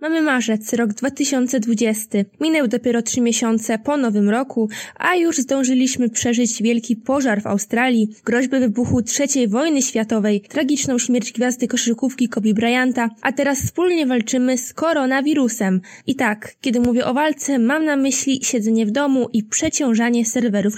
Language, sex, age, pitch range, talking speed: Polish, female, 20-39, 230-280 Hz, 145 wpm